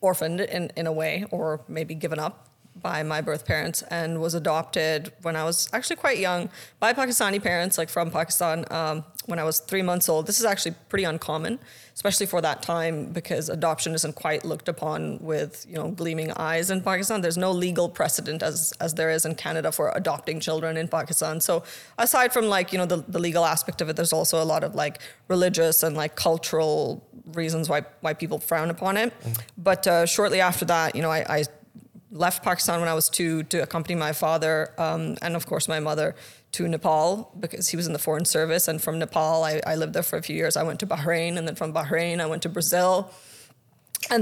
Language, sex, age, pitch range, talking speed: English, female, 20-39, 160-185 Hz, 215 wpm